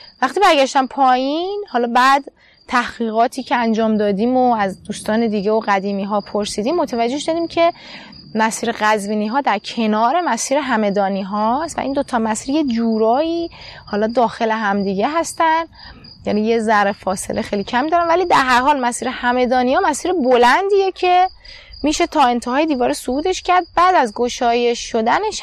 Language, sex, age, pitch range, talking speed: Persian, female, 20-39, 230-330 Hz, 150 wpm